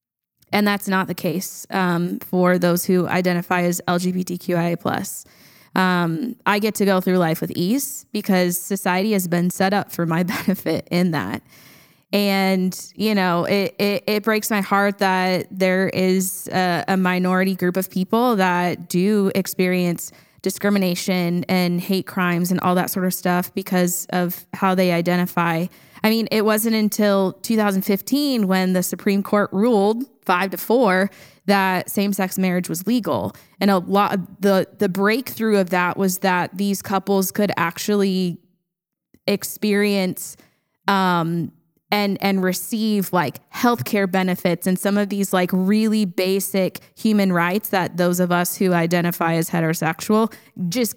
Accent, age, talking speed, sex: American, 20-39, 150 wpm, female